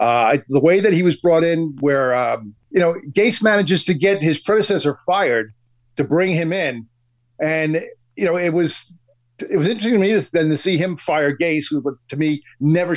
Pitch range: 145-185 Hz